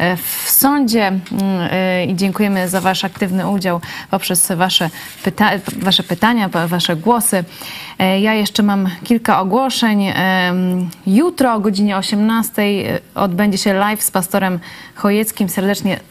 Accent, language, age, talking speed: native, Polish, 20-39, 115 wpm